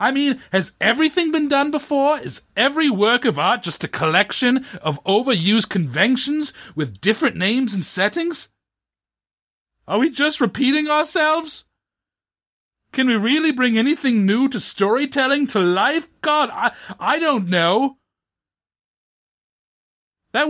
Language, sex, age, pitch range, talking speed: English, male, 40-59, 160-260 Hz, 130 wpm